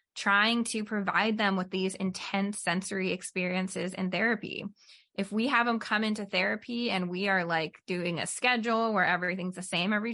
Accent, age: American, 20-39